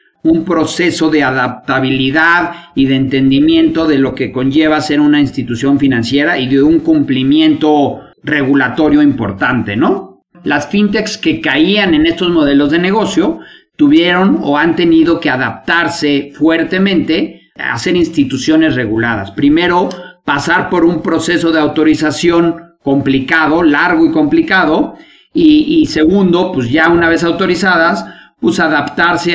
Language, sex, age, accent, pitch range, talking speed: Spanish, male, 50-69, Mexican, 145-185 Hz, 130 wpm